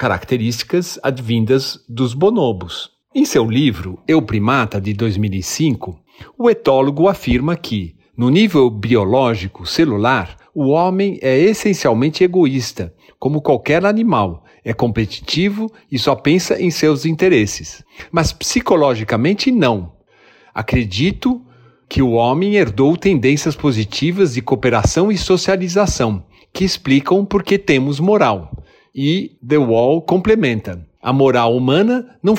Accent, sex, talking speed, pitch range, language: Brazilian, male, 115 wpm, 120-190 Hz, Portuguese